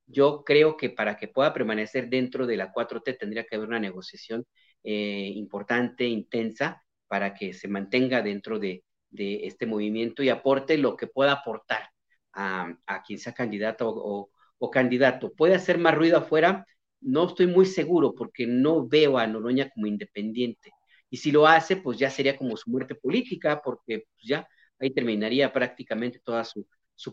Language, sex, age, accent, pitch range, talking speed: Spanish, male, 40-59, Mexican, 110-140 Hz, 170 wpm